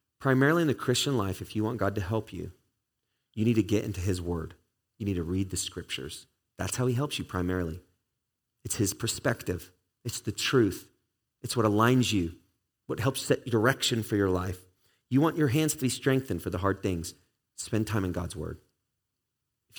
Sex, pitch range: male, 100-135 Hz